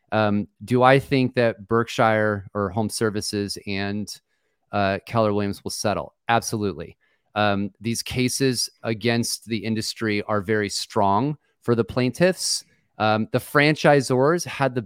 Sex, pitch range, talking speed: male, 105-125 Hz, 135 wpm